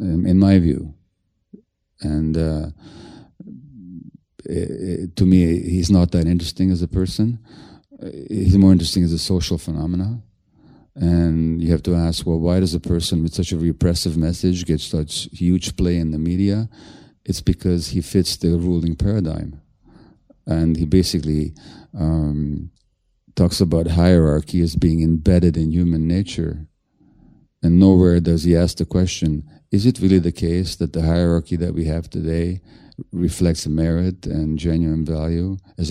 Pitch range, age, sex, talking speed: 80-90 Hz, 40-59, male, 145 wpm